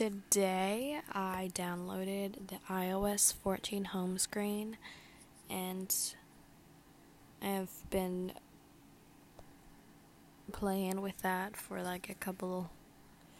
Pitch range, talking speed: 185-215 Hz, 80 wpm